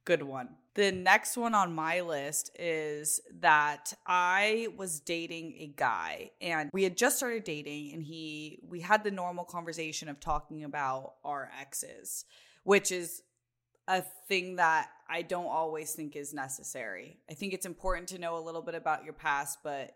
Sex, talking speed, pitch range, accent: female, 170 wpm, 150-180 Hz, American